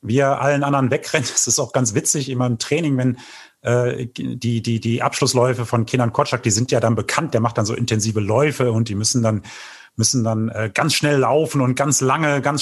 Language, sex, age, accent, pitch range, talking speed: German, male, 30-49, German, 120-140 Hz, 215 wpm